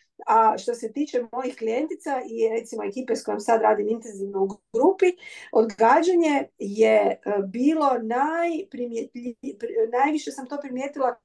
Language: Croatian